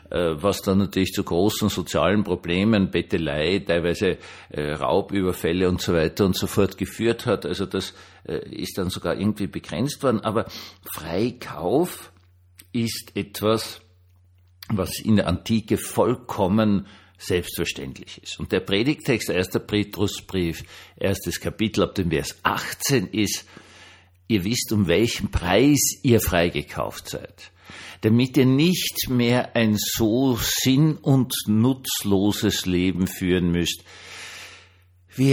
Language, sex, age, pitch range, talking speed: German, male, 60-79, 90-110 Hz, 120 wpm